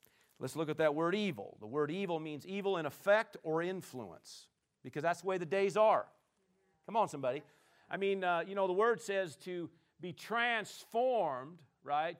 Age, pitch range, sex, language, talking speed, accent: 50-69, 165-215 Hz, male, English, 180 wpm, American